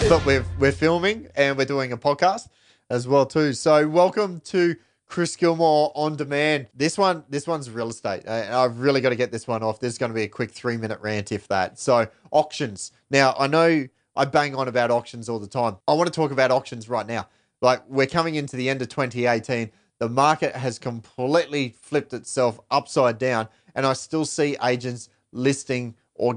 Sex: male